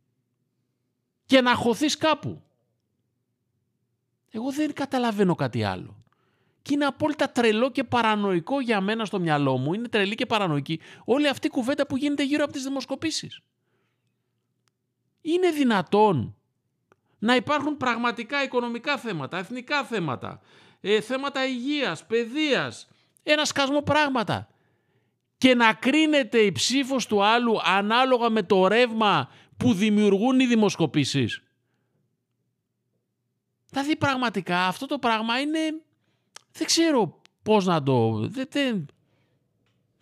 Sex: male